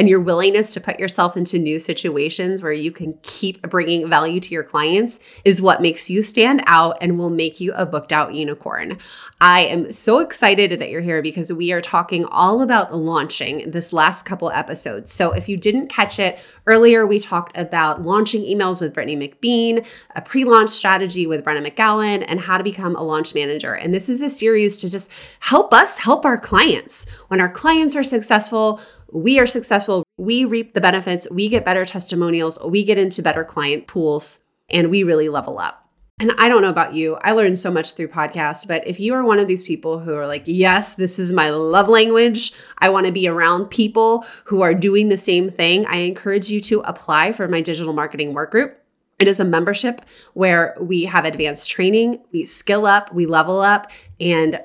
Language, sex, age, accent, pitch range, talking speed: English, female, 20-39, American, 160-205 Hz, 200 wpm